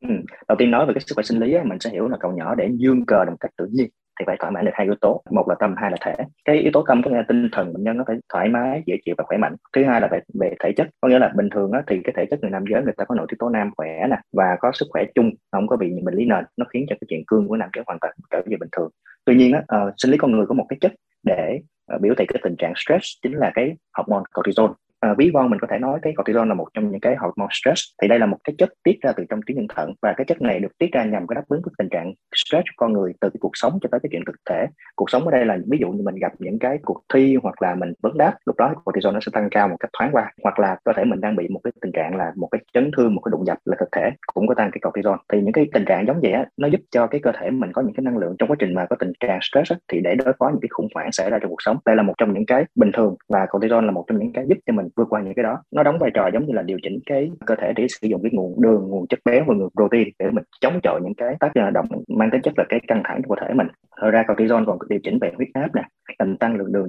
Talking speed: 335 wpm